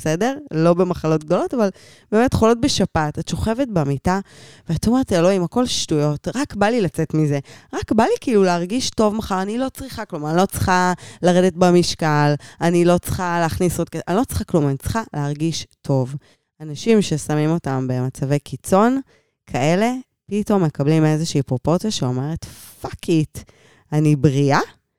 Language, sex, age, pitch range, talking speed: Hebrew, female, 20-39, 145-190 Hz, 160 wpm